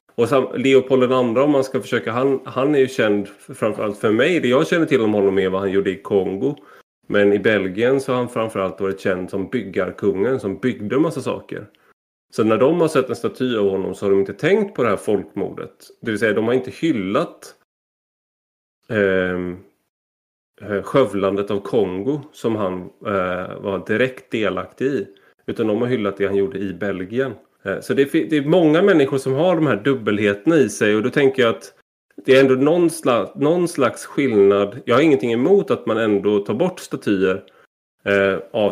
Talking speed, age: 195 wpm, 30-49